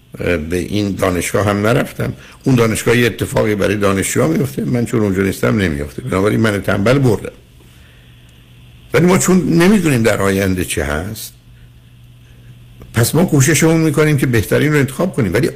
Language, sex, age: Persian, male, 60-79